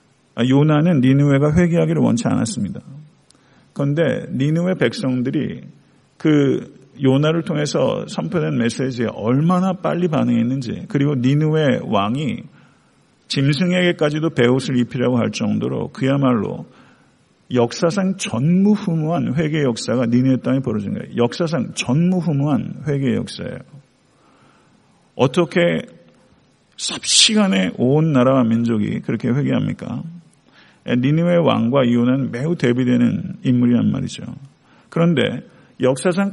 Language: Korean